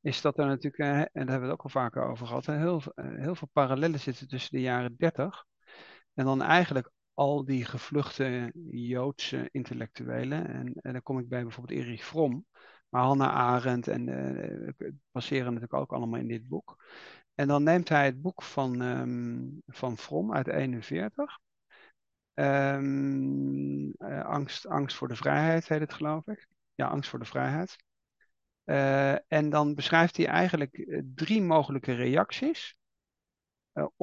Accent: Dutch